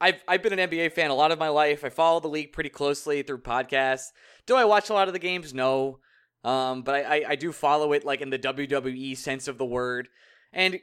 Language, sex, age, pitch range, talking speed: English, male, 20-39, 130-180 Hz, 250 wpm